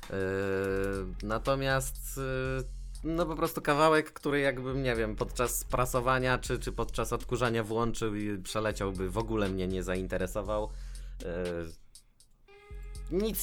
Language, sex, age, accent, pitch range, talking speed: Polish, male, 20-39, native, 90-120 Hz, 120 wpm